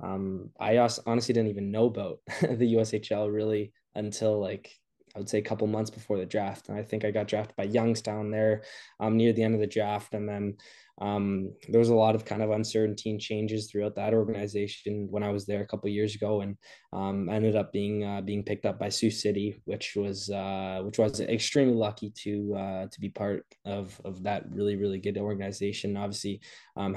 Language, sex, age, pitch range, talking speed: English, male, 10-29, 100-110 Hz, 210 wpm